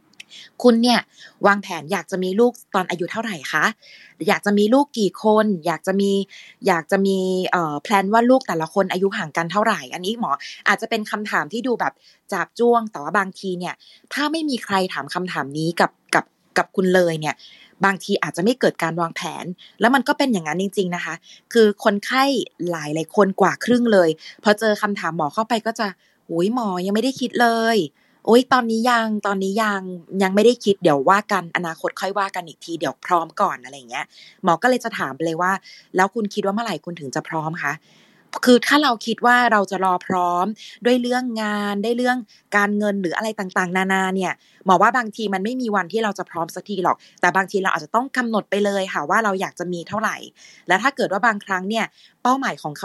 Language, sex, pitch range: Thai, female, 175-220 Hz